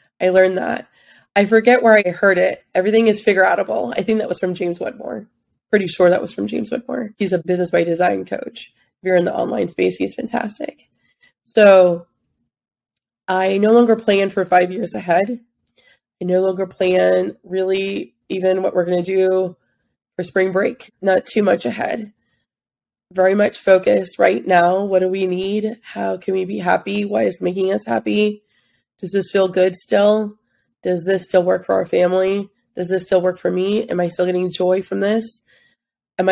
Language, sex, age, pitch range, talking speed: English, female, 20-39, 180-200 Hz, 185 wpm